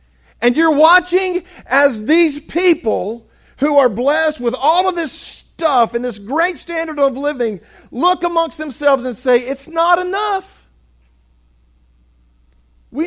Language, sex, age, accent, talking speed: English, male, 50-69, American, 135 wpm